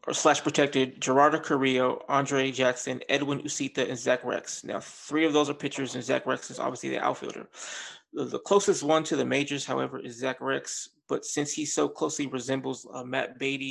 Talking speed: 195 wpm